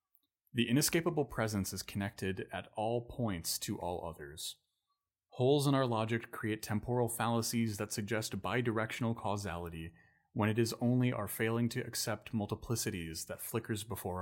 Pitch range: 95-120 Hz